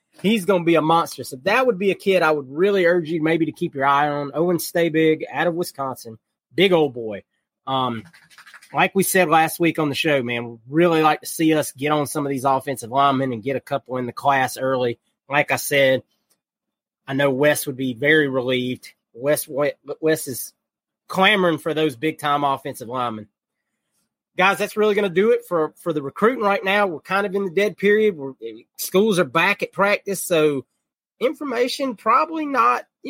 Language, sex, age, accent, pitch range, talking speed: English, male, 20-39, American, 140-190 Hz, 205 wpm